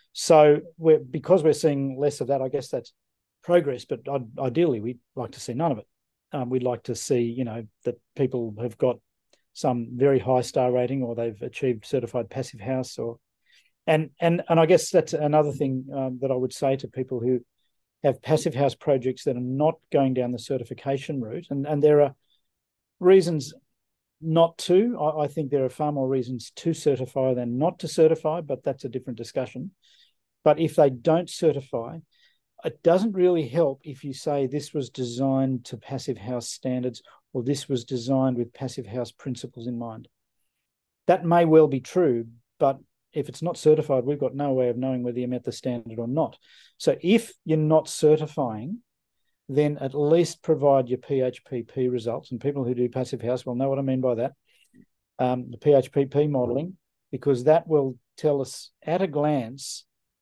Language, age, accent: English, 40-59, Australian